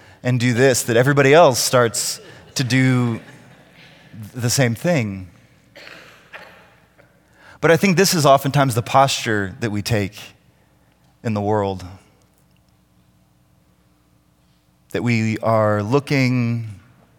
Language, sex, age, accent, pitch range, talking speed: English, male, 20-39, American, 100-160 Hz, 105 wpm